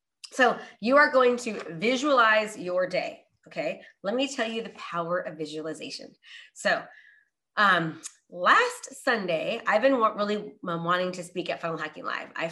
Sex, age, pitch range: female, 30-49, 165-225 Hz